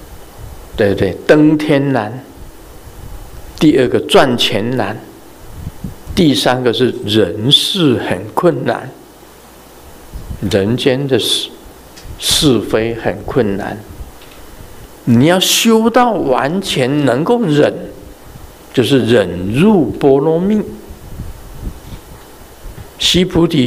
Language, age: Chinese, 50-69